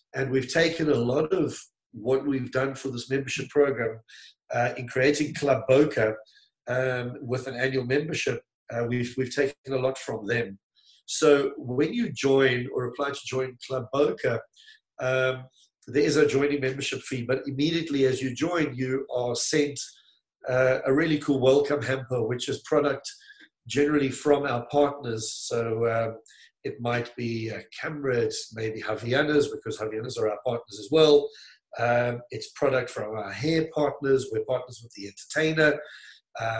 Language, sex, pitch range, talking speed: English, male, 120-145 Hz, 160 wpm